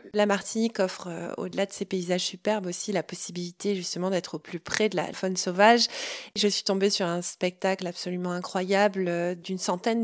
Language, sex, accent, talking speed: French, female, French, 180 wpm